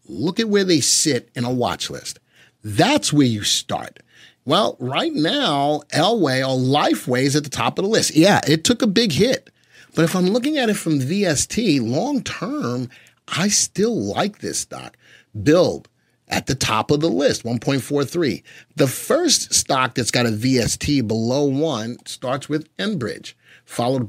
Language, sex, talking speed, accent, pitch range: English, male, 170 wpm, American, 120-165 Hz